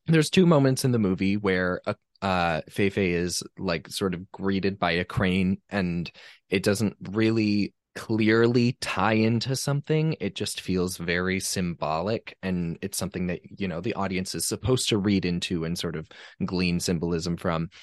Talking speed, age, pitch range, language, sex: 170 wpm, 20-39, 85-100 Hz, English, male